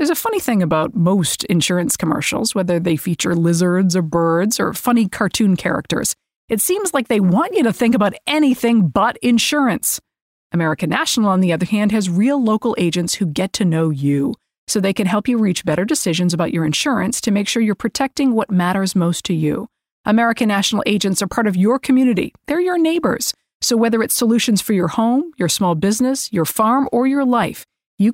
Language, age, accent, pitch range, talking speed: English, 40-59, American, 180-245 Hz, 200 wpm